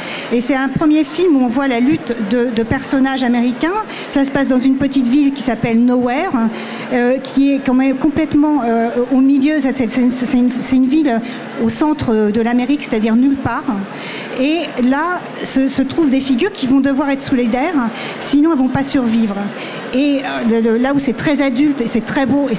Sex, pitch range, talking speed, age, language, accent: female, 240-285 Hz, 205 wpm, 40-59, French, French